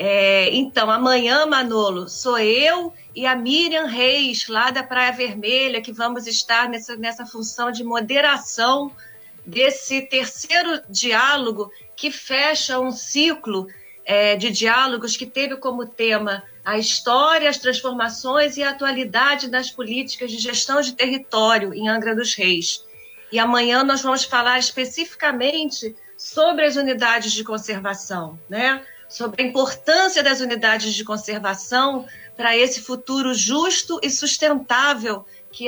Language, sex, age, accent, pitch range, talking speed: Portuguese, female, 40-59, Brazilian, 215-270 Hz, 130 wpm